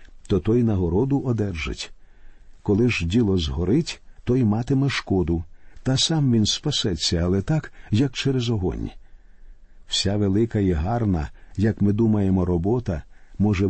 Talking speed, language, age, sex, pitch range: 125 wpm, Ukrainian, 50-69, male, 95-125 Hz